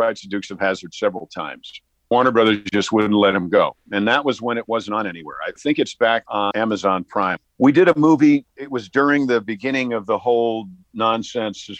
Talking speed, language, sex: 215 wpm, English, male